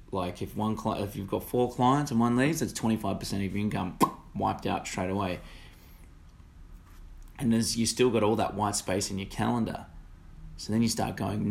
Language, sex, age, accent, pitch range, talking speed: English, male, 20-39, Australian, 90-125 Hz, 190 wpm